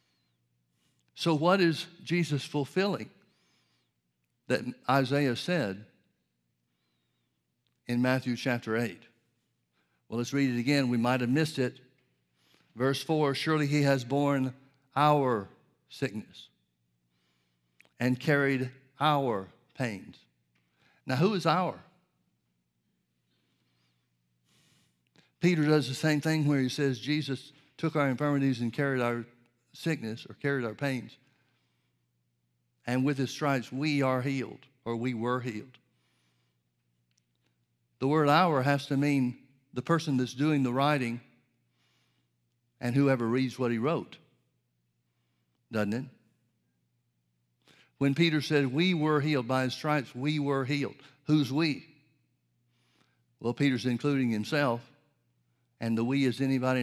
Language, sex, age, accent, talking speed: English, male, 60-79, American, 120 wpm